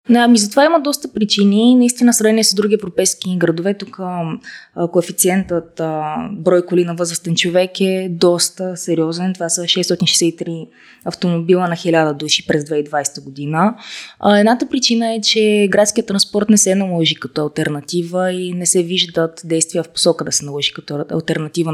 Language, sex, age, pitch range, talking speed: Bulgarian, female, 20-39, 170-210 Hz, 155 wpm